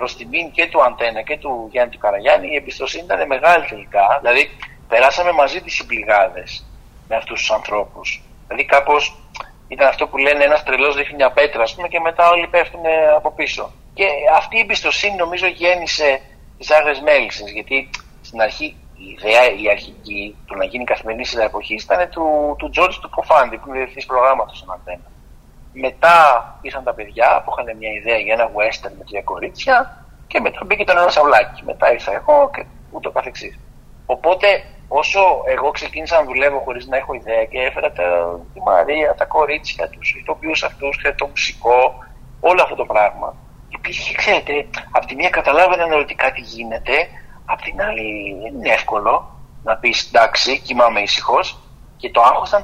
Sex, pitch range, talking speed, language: male, 115-170 Hz, 175 wpm, Greek